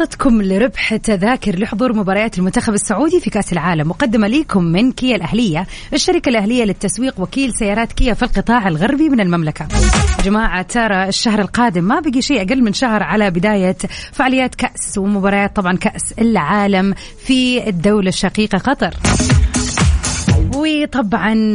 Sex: female